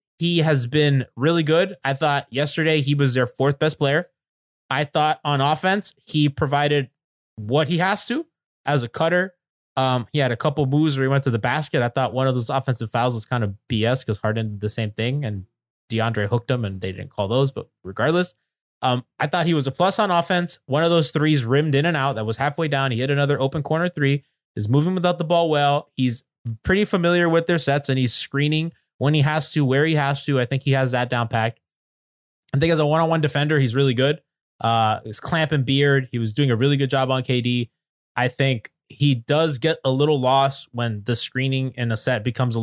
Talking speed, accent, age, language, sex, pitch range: 230 wpm, American, 20-39, English, male, 125-155 Hz